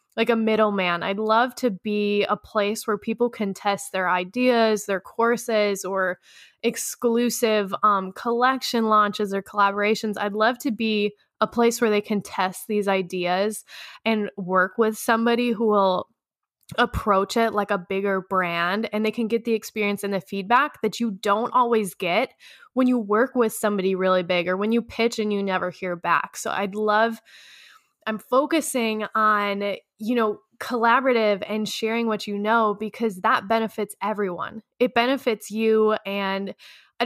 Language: English